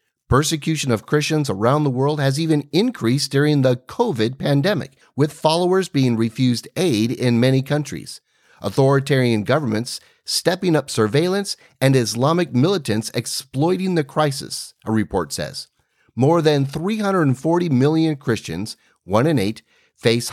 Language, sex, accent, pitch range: English, male, American, 115-155 Hz